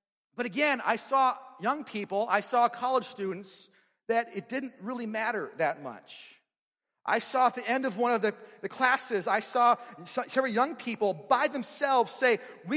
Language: English